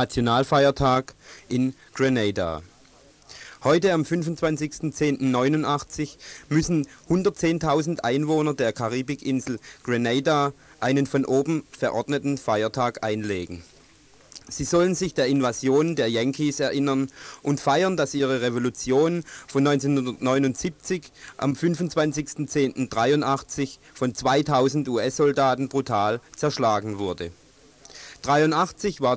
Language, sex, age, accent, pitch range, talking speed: German, male, 40-59, German, 130-155 Hz, 90 wpm